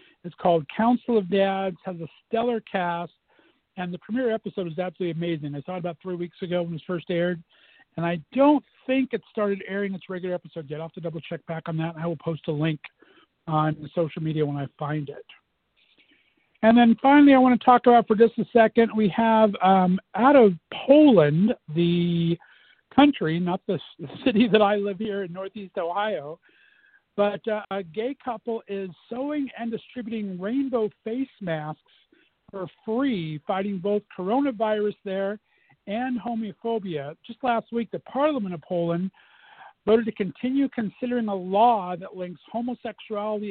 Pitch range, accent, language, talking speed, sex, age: 175-230 Hz, American, English, 175 wpm, male, 50-69